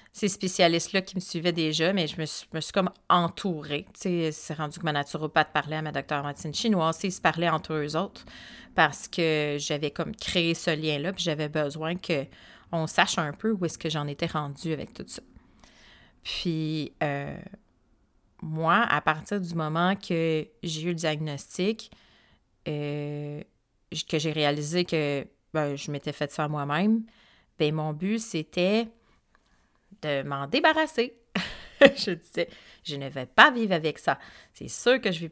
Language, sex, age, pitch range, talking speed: French, female, 30-49, 155-185 Hz, 175 wpm